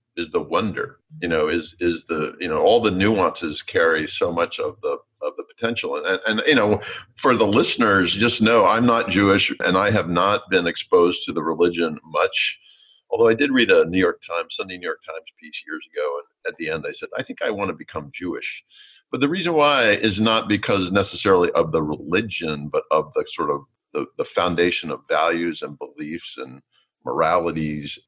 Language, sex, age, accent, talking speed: English, male, 50-69, American, 205 wpm